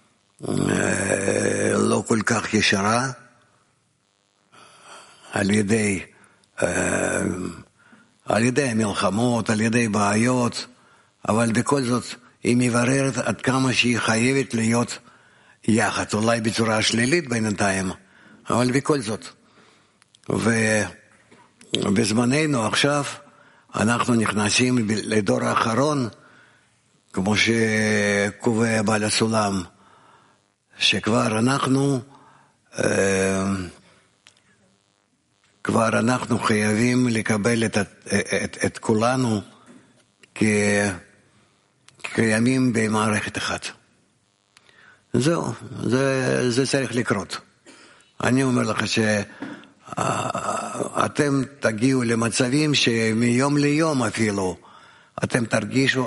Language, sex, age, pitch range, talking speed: English, male, 60-79, 105-125 Hz, 75 wpm